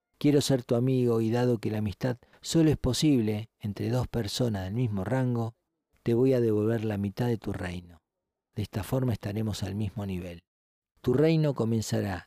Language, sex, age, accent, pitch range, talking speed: Spanish, male, 40-59, Argentinian, 100-130 Hz, 180 wpm